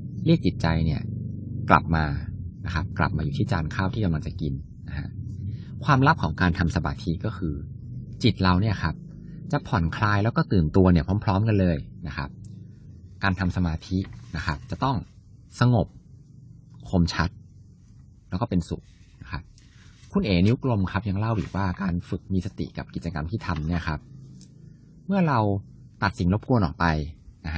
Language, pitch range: Thai, 85-115 Hz